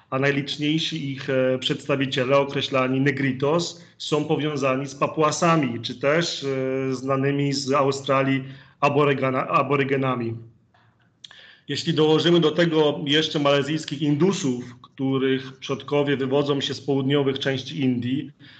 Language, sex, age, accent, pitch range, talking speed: Polish, male, 40-59, native, 135-155 Hz, 100 wpm